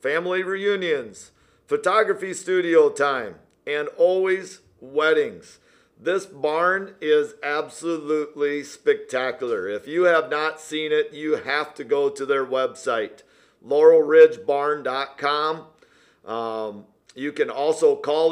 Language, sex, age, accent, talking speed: English, male, 50-69, American, 100 wpm